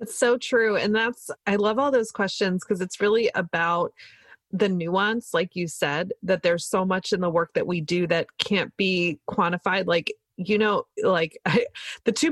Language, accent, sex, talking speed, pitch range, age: English, American, female, 190 wpm, 180-220 Hz, 30-49